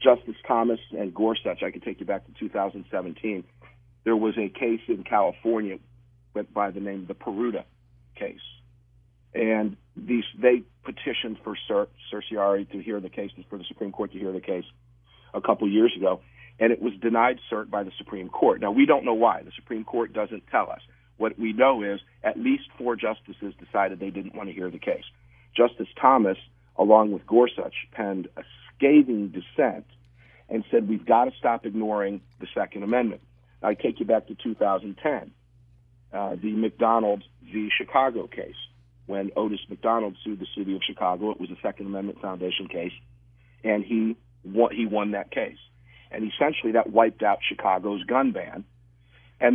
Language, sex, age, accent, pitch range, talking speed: English, male, 50-69, American, 100-120 Hz, 180 wpm